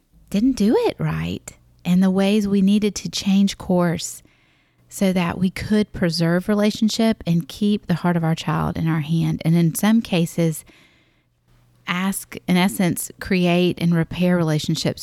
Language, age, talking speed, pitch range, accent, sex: English, 30-49, 155 wpm, 160-200 Hz, American, female